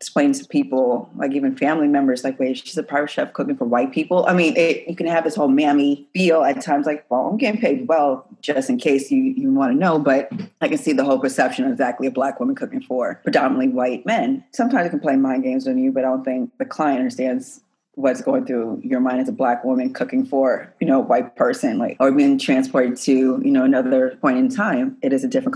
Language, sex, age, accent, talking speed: English, female, 30-49, American, 250 wpm